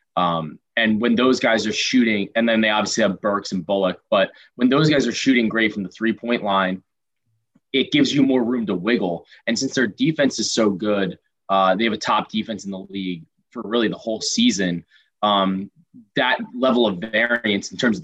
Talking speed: 205 wpm